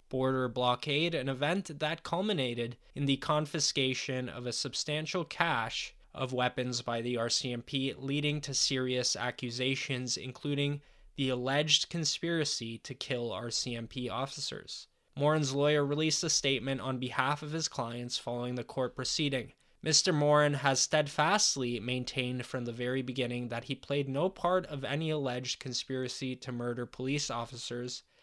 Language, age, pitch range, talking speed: English, 10-29, 125-150 Hz, 140 wpm